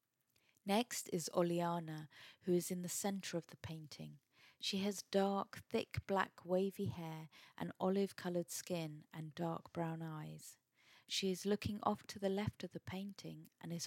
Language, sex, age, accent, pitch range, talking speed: English, female, 30-49, British, 155-185 Hz, 165 wpm